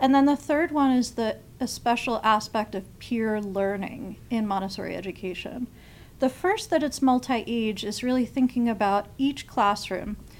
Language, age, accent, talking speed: English, 40-59, American, 155 wpm